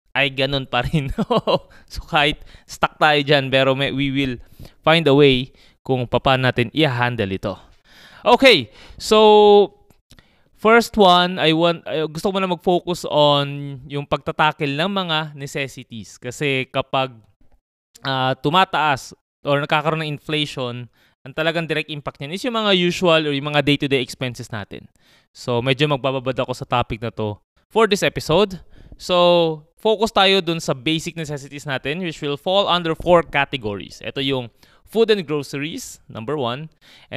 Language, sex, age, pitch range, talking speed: Filipino, male, 20-39, 130-165 Hz, 150 wpm